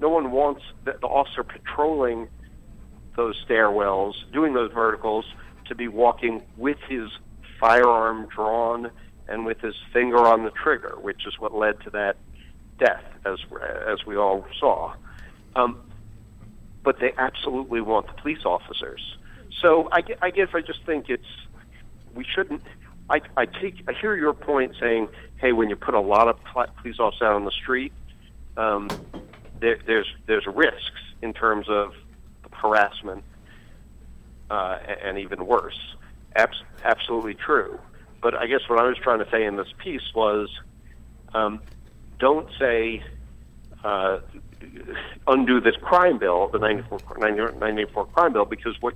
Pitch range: 100-120 Hz